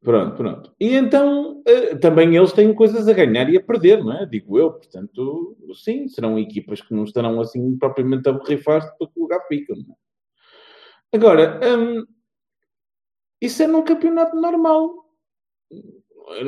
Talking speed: 155 wpm